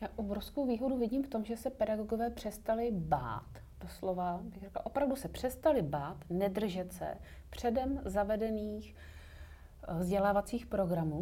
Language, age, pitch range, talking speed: Czech, 30-49, 180-205 Hz, 130 wpm